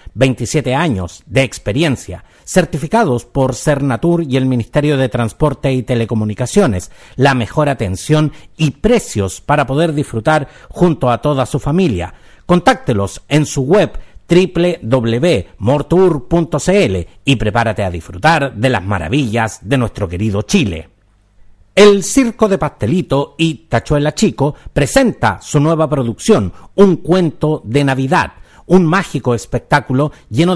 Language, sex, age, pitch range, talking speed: Spanish, male, 50-69, 110-165 Hz, 120 wpm